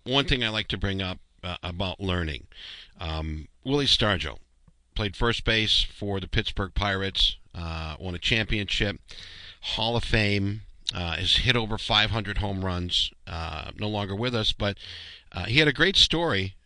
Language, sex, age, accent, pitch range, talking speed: English, male, 50-69, American, 85-120 Hz, 165 wpm